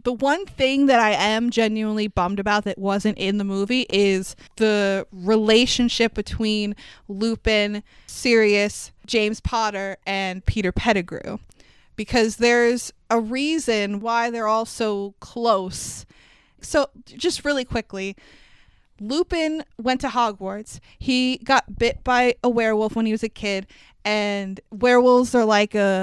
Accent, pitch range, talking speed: American, 205-240 Hz, 135 wpm